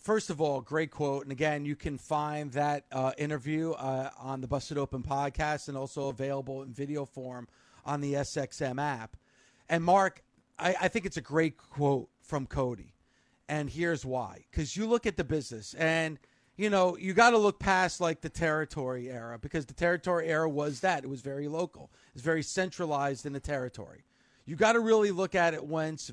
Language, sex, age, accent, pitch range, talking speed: English, male, 40-59, American, 140-170 Hz, 195 wpm